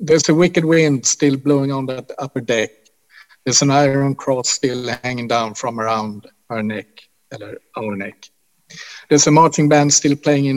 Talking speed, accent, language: 170 wpm, Norwegian, Swedish